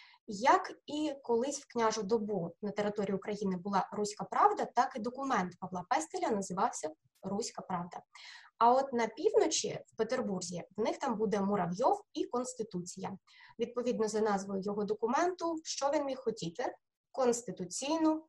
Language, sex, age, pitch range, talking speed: Ukrainian, female, 20-39, 205-270 Hz, 140 wpm